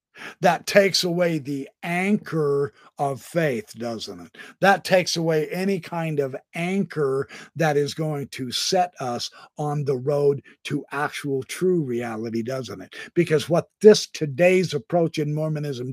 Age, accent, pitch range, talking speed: 50-69, American, 125-175 Hz, 145 wpm